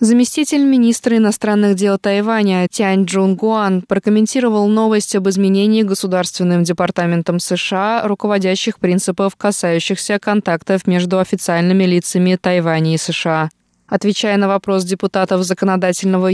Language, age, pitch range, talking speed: Russian, 20-39, 175-210 Hz, 110 wpm